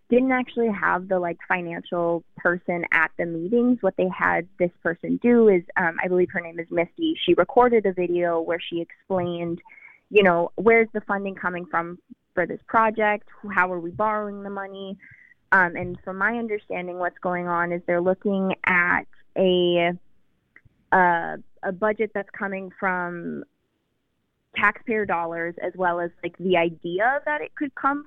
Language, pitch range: English, 170-205 Hz